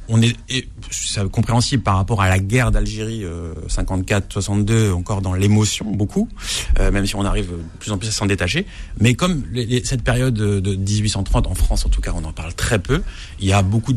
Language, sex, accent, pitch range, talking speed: French, male, French, 95-115 Hz, 215 wpm